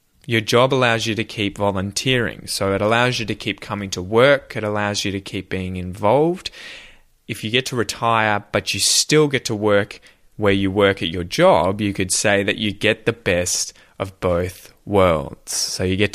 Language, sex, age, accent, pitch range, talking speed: English, male, 20-39, Australian, 95-115 Hz, 200 wpm